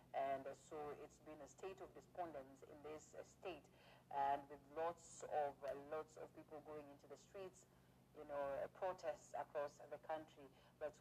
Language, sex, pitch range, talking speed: English, female, 140-160 Hz, 160 wpm